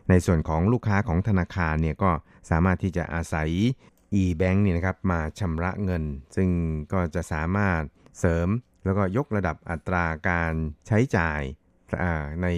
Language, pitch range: Thai, 85-100 Hz